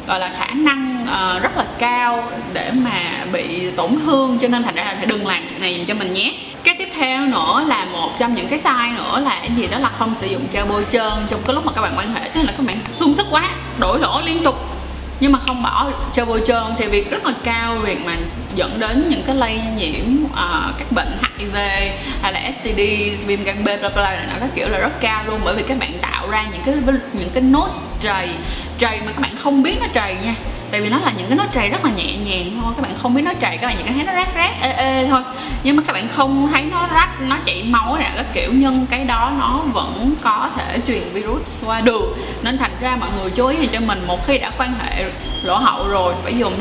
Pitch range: 215-270 Hz